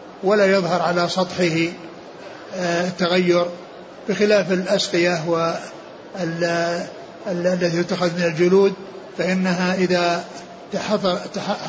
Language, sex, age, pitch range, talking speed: Arabic, male, 60-79, 175-195 Hz, 65 wpm